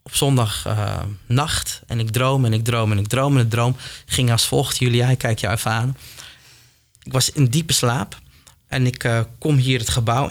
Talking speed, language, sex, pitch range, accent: 205 wpm, Dutch, male, 115-135 Hz, Dutch